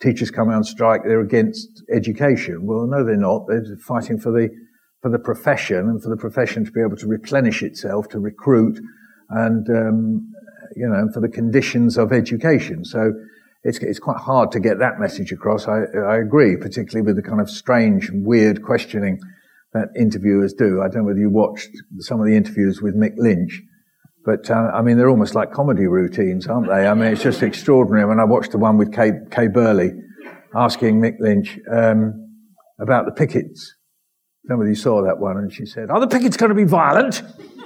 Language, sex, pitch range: English, male, 110-185 Hz